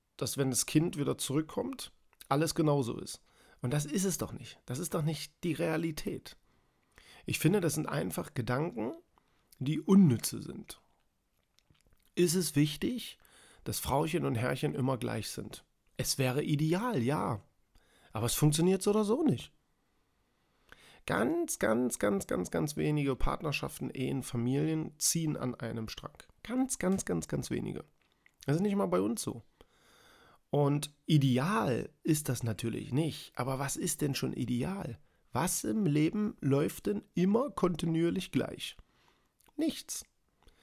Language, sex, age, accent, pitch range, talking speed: German, male, 40-59, German, 125-180 Hz, 145 wpm